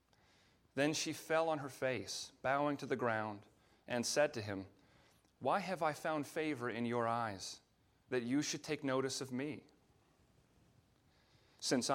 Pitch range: 115-155 Hz